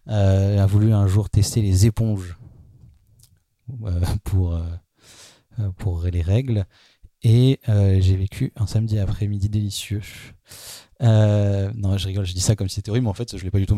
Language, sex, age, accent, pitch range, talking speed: French, male, 30-49, French, 95-120 Hz, 180 wpm